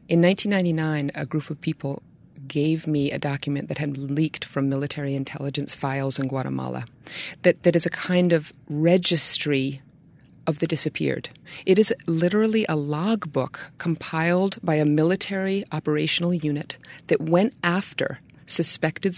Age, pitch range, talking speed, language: 30-49, 150-180 Hz, 140 wpm, English